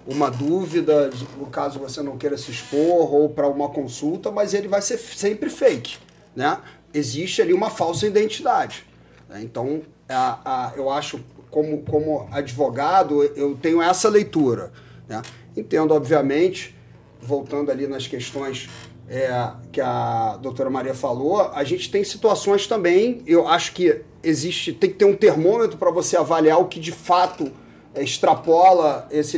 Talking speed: 150 wpm